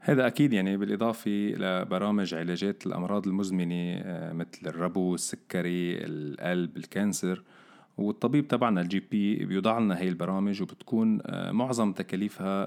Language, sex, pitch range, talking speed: Arabic, male, 90-110 Hz, 115 wpm